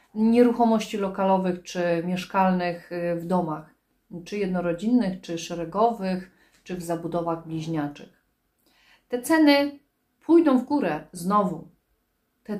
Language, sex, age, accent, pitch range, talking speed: Polish, female, 30-49, native, 180-255 Hz, 100 wpm